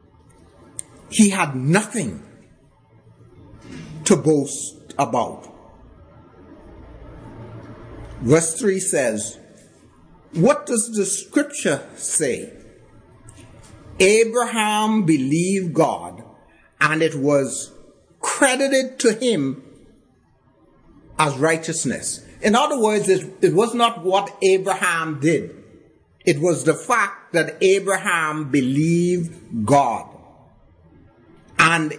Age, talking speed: 60-79, 85 wpm